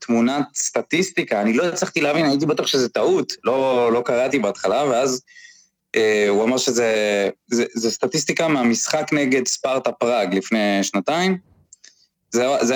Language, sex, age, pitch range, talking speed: Hebrew, male, 20-39, 105-145 Hz, 135 wpm